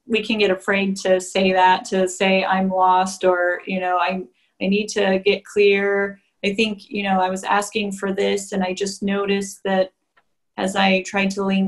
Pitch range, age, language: 190-225 Hz, 30-49, English